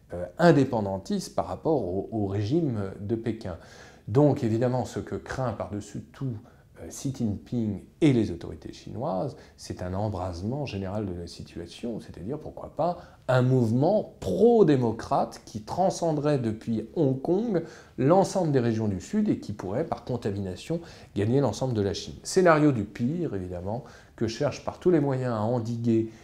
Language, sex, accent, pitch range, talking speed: French, male, French, 95-125 Hz, 155 wpm